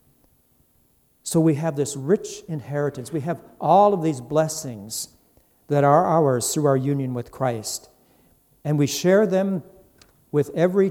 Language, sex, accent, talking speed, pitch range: English, male, American, 145 wpm, 125-155 Hz